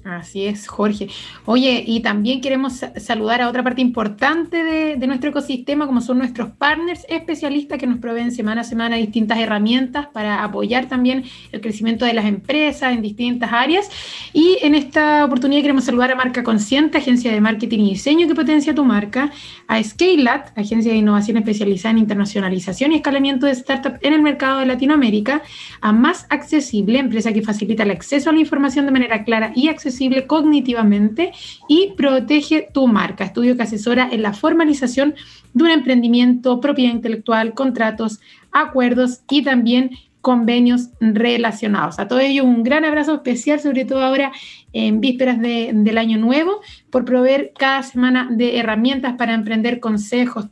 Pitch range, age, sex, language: 225-280 Hz, 30-49, female, Spanish